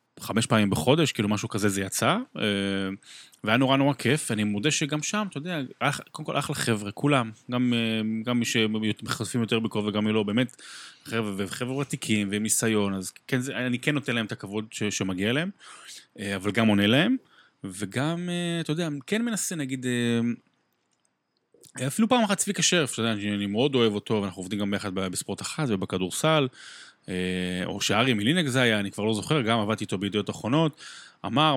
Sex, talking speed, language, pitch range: male, 175 wpm, Hebrew, 100-145 Hz